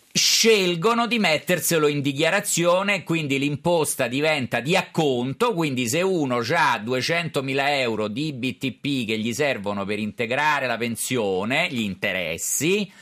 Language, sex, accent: Italian, male, native